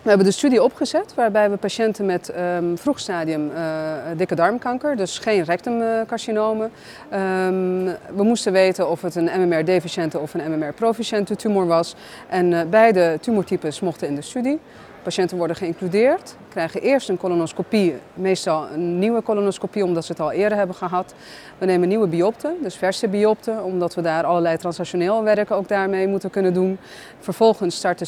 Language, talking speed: Dutch, 160 wpm